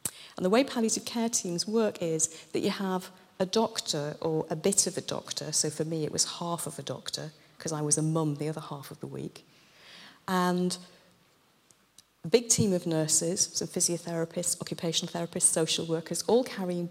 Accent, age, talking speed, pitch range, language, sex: British, 40-59, 190 wpm, 165-220 Hz, English, female